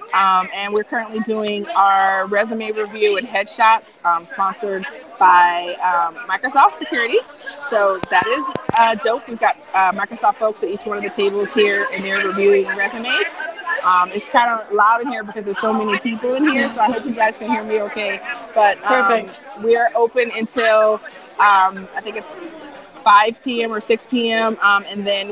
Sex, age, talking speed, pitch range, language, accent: female, 20-39, 185 wpm, 195-230 Hz, English, American